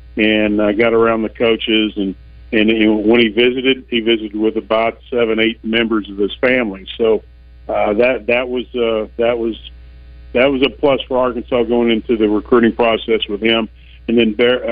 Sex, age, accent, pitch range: male, 50-69, American, 105-120 Hz